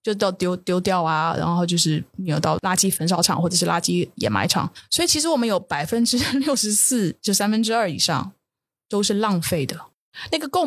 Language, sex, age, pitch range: Chinese, female, 20-39, 175-215 Hz